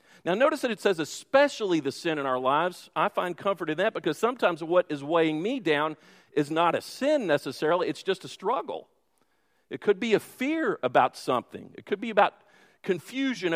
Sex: male